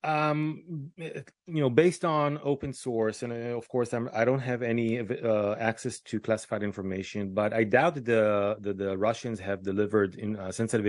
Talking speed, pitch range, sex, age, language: 180 wpm, 110-130 Hz, male, 30-49, English